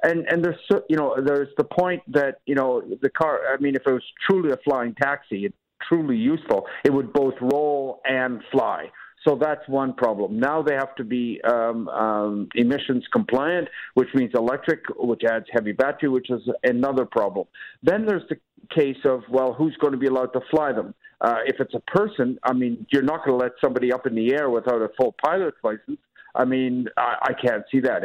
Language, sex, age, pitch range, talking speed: English, male, 50-69, 125-155 Hz, 230 wpm